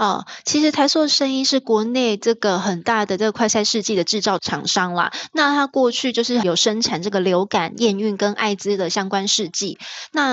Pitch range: 200-250 Hz